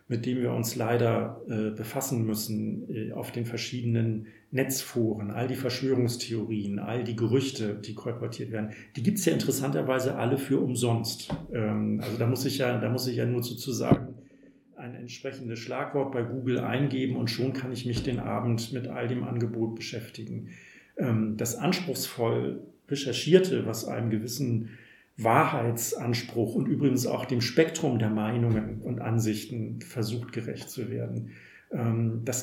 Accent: German